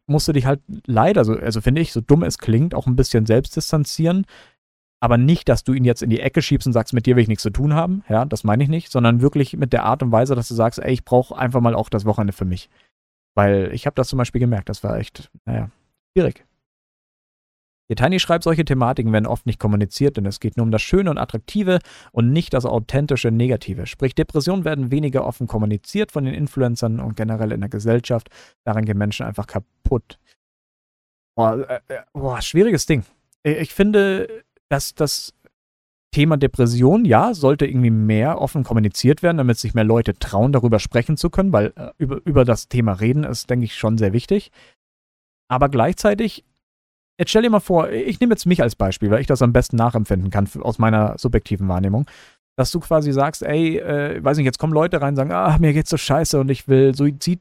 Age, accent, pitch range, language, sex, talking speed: 40-59, German, 110-145 Hz, German, male, 210 wpm